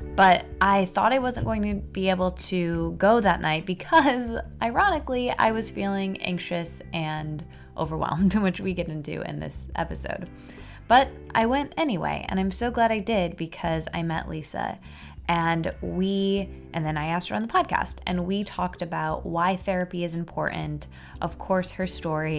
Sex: female